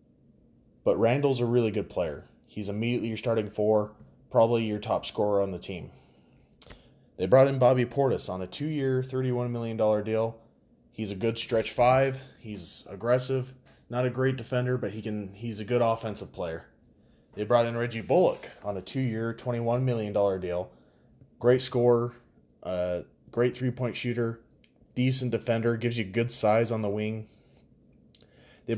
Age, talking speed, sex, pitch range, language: 20-39, 155 wpm, male, 110-135 Hz, English